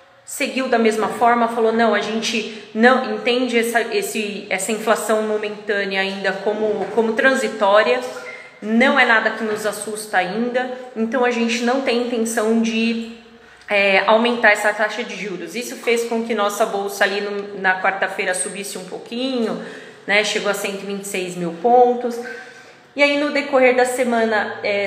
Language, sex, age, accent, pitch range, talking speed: Portuguese, female, 20-39, Brazilian, 195-230 Hz, 150 wpm